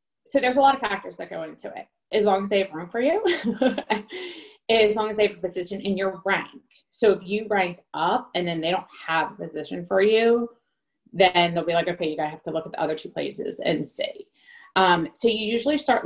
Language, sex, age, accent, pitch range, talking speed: English, female, 30-49, American, 170-225 Hz, 240 wpm